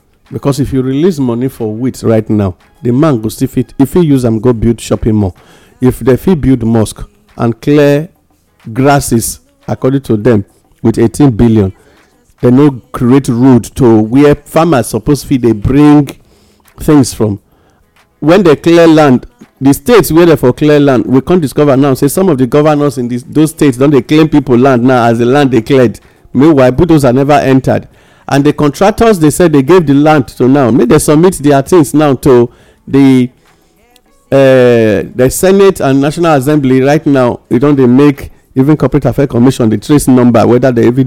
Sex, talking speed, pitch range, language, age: male, 185 wpm, 115-145 Hz, English, 50-69